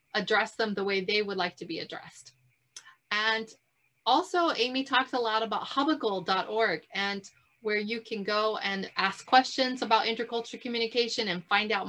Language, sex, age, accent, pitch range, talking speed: English, female, 30-49, American, 200-260 Hz, 160 wpm